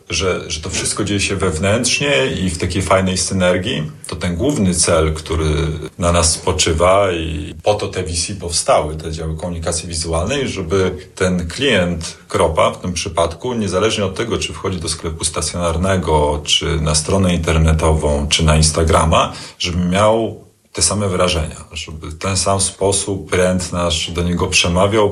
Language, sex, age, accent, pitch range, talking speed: Polish, male, 40-59, native, 80-95 Hz, 160 wpm